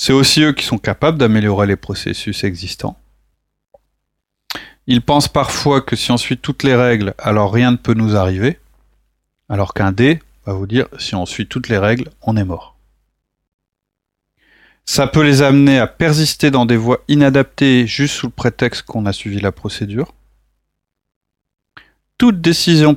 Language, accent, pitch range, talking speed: French, French, 110-140 Hz, 160 wpm